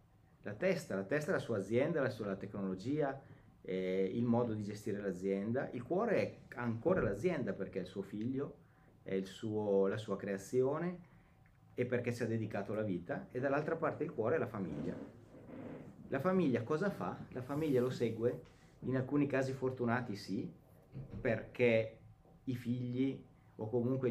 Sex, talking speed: male, 155 wpm